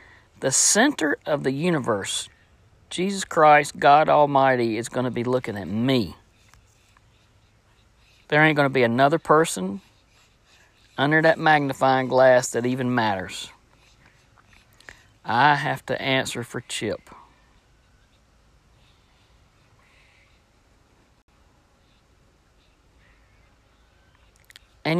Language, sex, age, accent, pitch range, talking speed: English, male, 50-69, American, 105-140 Hz, 90 wpm